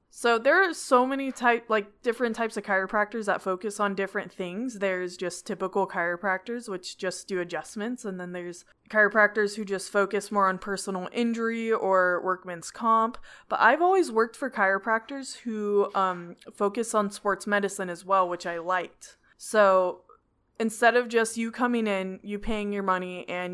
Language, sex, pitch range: English, female, 185-230 Hz